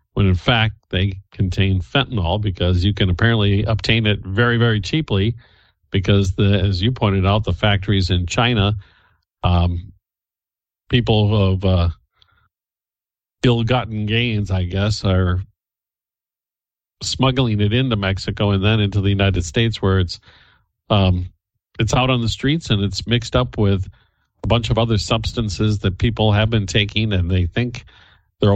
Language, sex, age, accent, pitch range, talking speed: English, male, 50-69, American, 90-110 Hz, 150 wpm